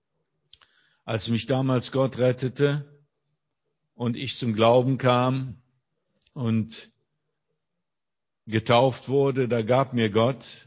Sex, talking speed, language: male, 95 wpm, German